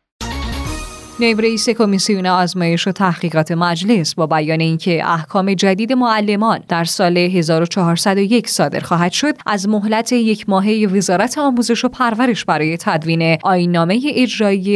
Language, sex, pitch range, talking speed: Persian, female, 170-230 Hz, 120 wpm